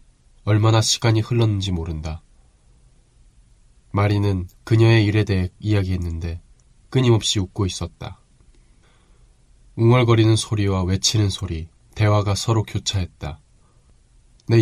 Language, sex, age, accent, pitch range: Korean, male, 20-39, native, 90-110 Hz